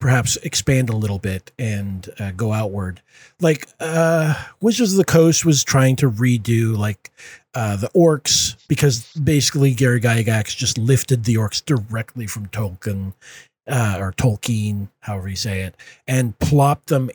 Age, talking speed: 40-59, 155 wpm